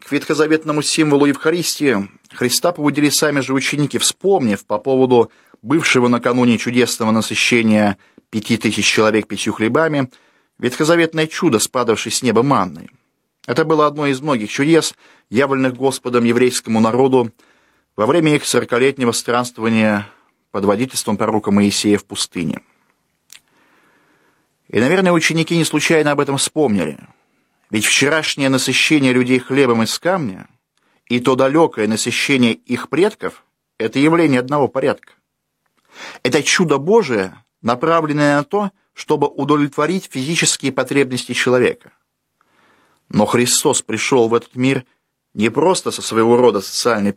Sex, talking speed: male, 120 wpm